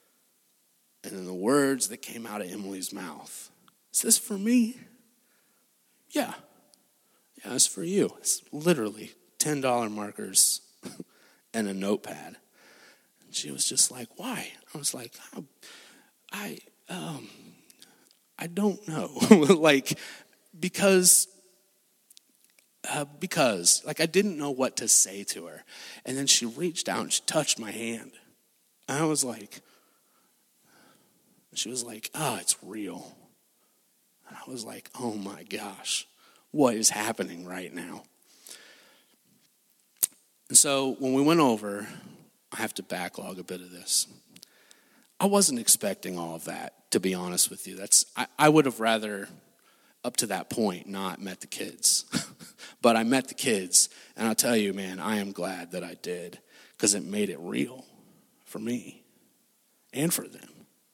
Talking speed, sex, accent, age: 145 wpm, male, American, 30-49